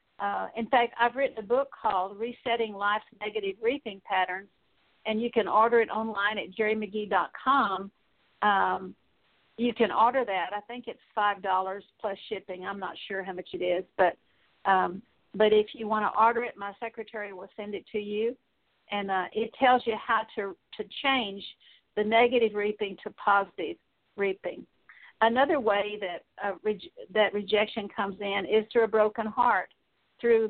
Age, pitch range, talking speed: 50-69, 195-225 Hz, 165 wpm